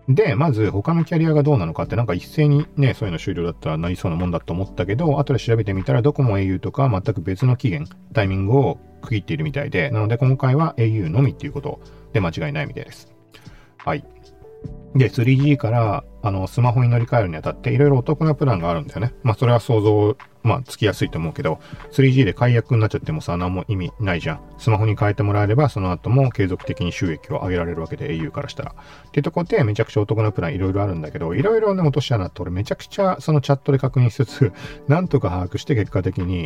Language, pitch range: Japanese, 105-145 Hz